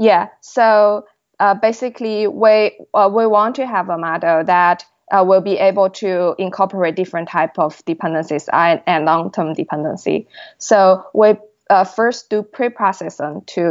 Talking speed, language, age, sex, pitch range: 145 wpm, English, 20-39, female, 165-200 Hz